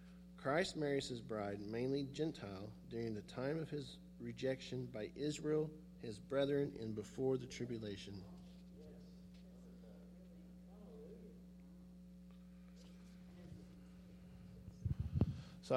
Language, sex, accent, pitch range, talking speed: English, male, American, 110-180 Hz, 80 wpm